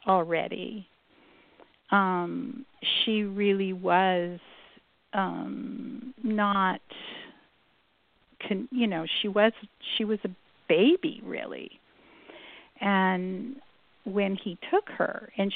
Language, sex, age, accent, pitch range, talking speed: English, female, 50-69, American, 195-265 Hz, 85 wpm